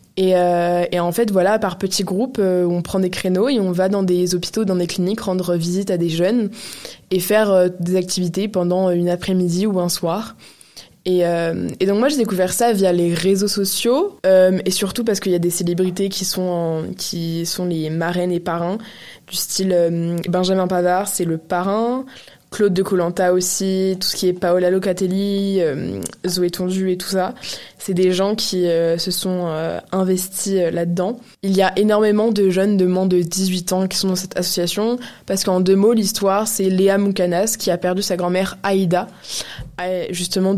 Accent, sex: French, female